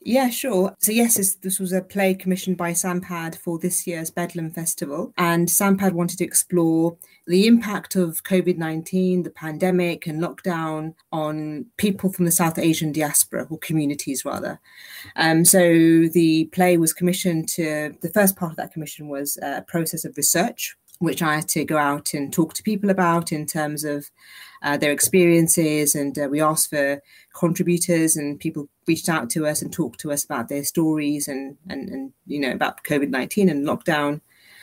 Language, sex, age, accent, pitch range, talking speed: English, female, 30-49, British, 155-185 Hz, 175 wpm